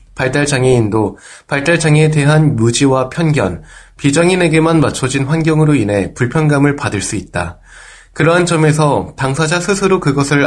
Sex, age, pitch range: male, 20-39, 115-155 Hz